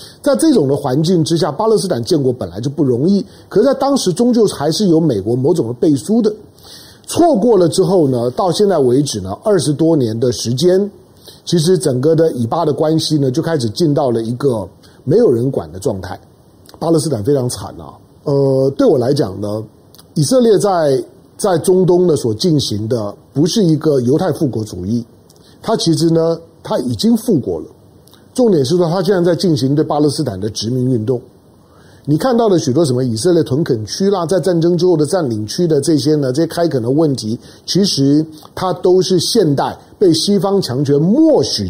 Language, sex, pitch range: Chinese, male, 125-185 Hz